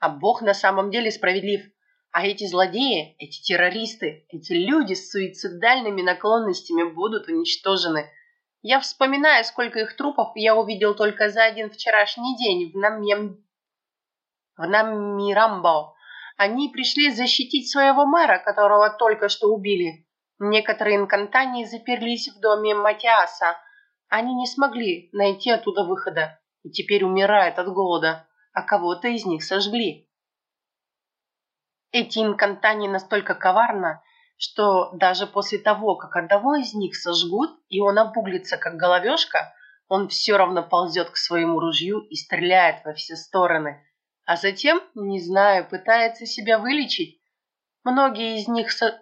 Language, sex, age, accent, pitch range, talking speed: Russian, female, 30-49, native, 180-230 Hz, 125 wpm